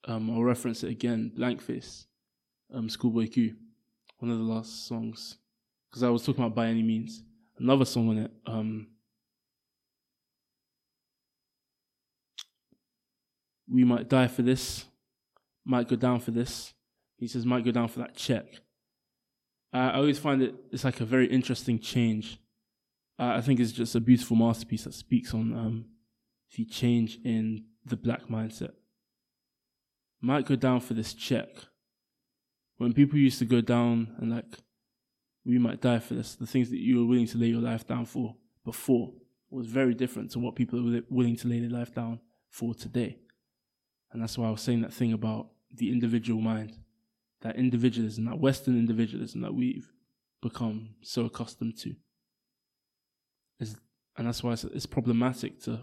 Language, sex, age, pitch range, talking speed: English, male, 20-39, 115-125 Hz, 165 wpm